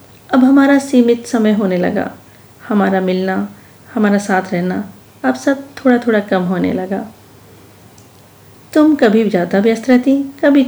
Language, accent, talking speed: Hindi, native, 135 wpm